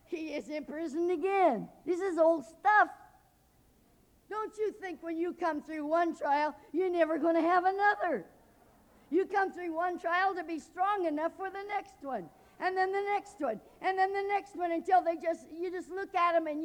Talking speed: 200 wpm